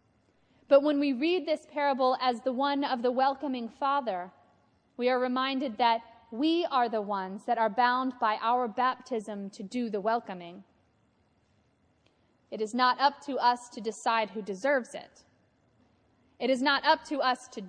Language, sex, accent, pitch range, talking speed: English, female, American, 215-265 Hz, 165 wpm